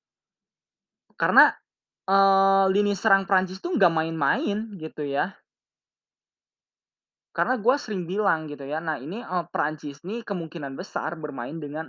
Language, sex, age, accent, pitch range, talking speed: Indonesian, male, 20-39, native, 130-175 Hz, 130 wpm